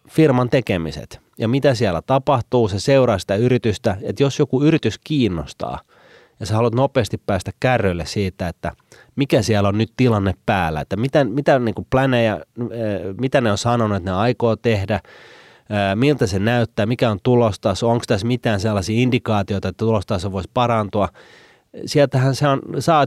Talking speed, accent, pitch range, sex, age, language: 160 wpm, native, 95-125 Hz, male, 30-49, Finnish